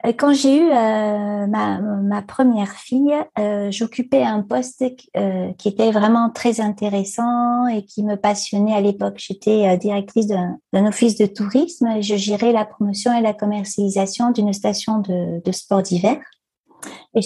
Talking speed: 155 wpm